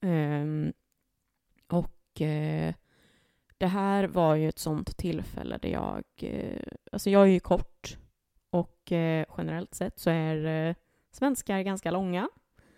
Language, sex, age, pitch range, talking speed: Swedish, female, 20-39, 160-195 Hz, 110 wpm